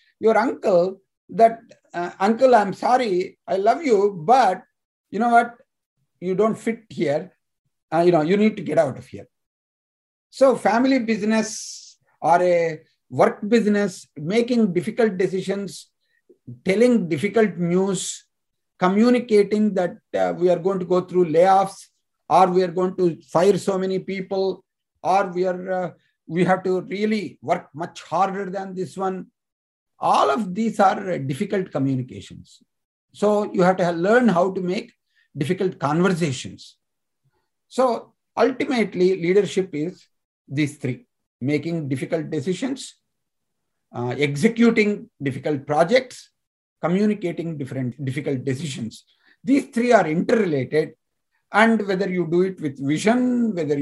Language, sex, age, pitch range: Telugu, male, 50-69, 160-215 Hz